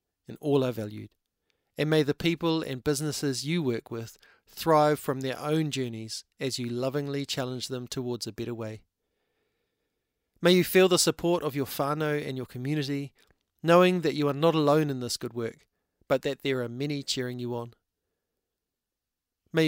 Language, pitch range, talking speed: English, 125-155 Hz, 175 wpm